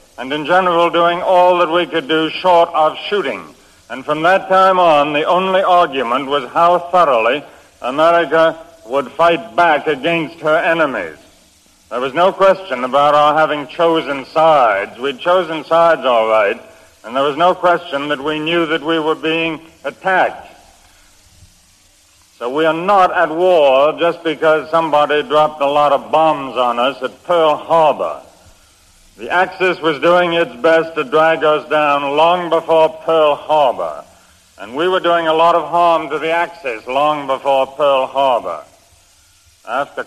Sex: male